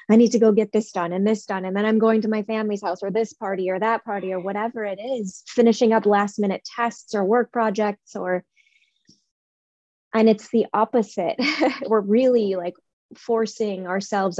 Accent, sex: American, female